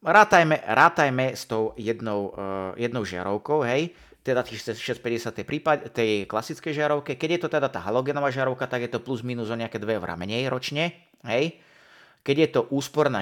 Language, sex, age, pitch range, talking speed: Slovak, male, 30-49, 110-145 Hz, 170 wpm